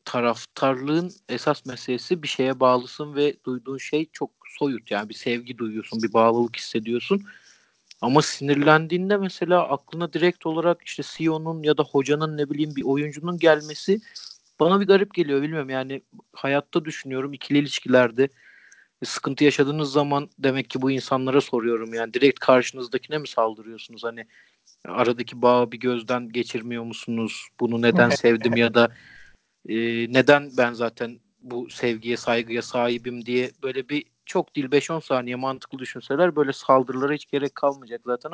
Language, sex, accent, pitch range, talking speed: Turkish, male, native, 120-150 Hz, 145 wpm